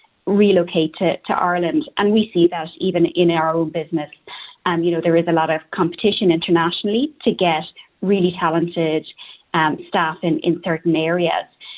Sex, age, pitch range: female, 30-49, 170-200 Hz